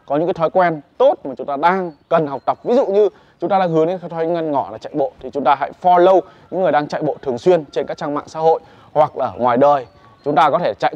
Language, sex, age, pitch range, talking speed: Vietnamese, male, 20-39, 140-185 Hz, 295 wpm